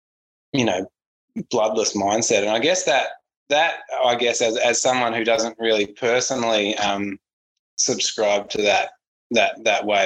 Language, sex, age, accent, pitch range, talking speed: English, male, 20-39, Australian, 100-125 Hz, 150 wpm